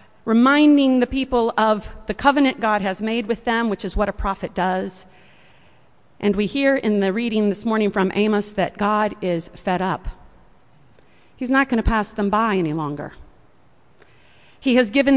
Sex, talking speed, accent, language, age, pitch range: female, 175 wpm, American, English, 40-59, 195-265 Hz